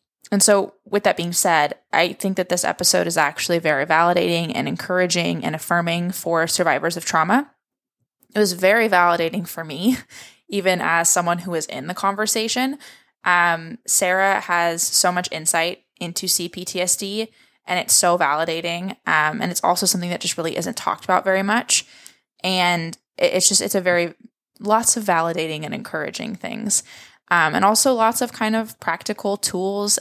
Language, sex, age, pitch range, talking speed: English, female, 20-39, 170-200 Hz, 165 wpm